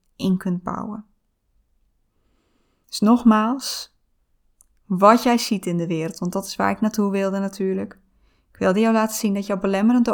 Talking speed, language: 160 wpm, Dutch